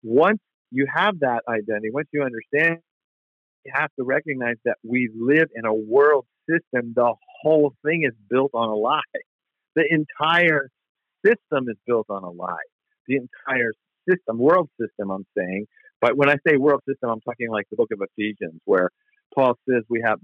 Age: 50-69